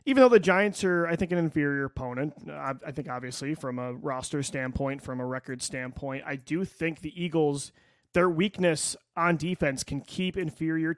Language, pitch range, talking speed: English, 140-170 Hz, 180 wpm